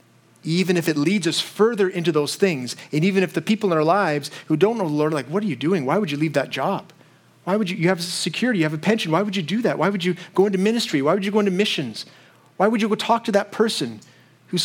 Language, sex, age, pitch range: English, male, 30-49, 130-190 Hz